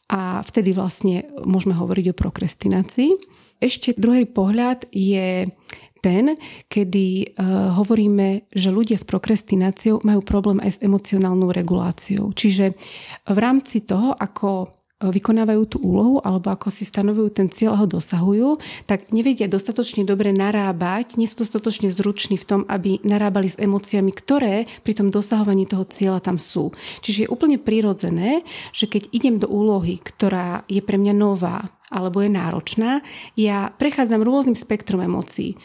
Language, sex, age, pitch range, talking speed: Slovak, female, 30-49, 195-225 Hz, 145 wpm